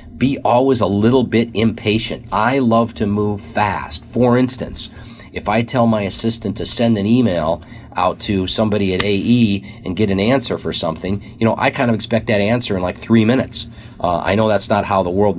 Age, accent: 40-59, American